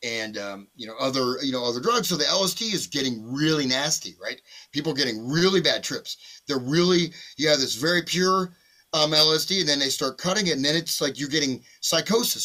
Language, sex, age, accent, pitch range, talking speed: English, male, 30-49, American, 130-170 Hz, 215 wpm